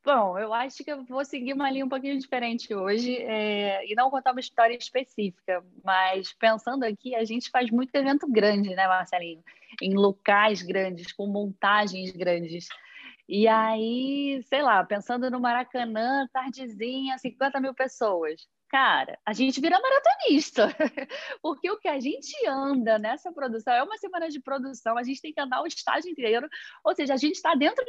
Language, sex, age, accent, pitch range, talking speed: Portuguese, female, 10-29, Brazilian, 220-285 Hz, 170 wpm